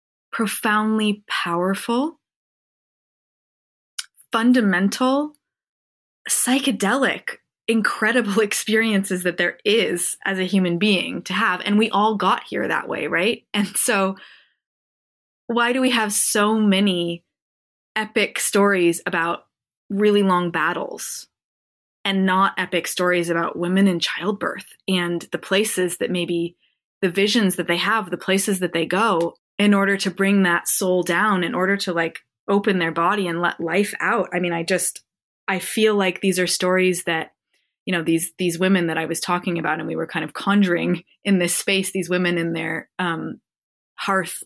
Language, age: English, 20-39